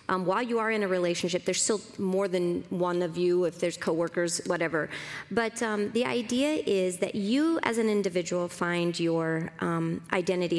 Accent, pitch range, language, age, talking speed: American, 175-225 Hz, English, 40-59, 180 wpm